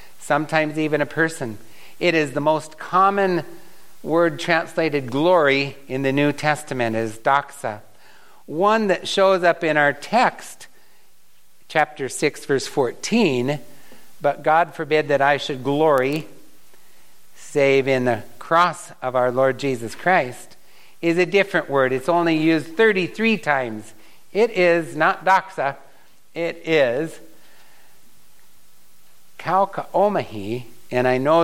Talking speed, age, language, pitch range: 120 wpm, 60-79, English, 125-175 Hz